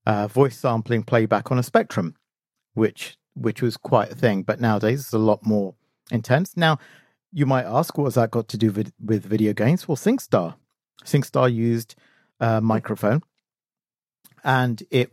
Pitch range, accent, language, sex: 110-135 Hz, British, English, male